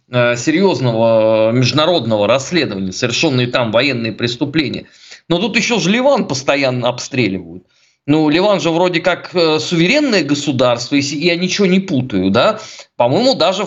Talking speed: 125 wpm